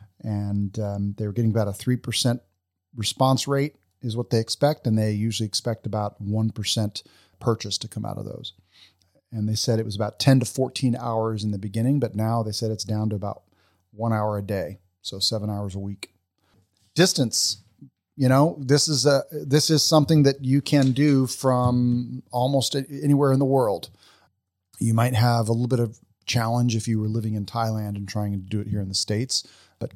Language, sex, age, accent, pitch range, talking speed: English, male, 40-59, American, 105-130 Hz, 200 wpm